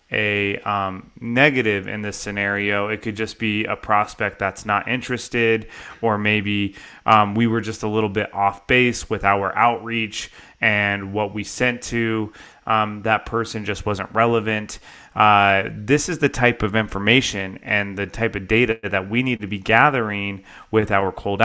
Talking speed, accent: 170 wpm, American